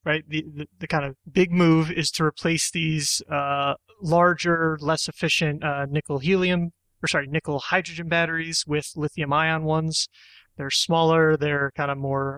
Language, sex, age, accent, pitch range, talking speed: English, male, 30-49, American, 145-170 Hz, 165 wpm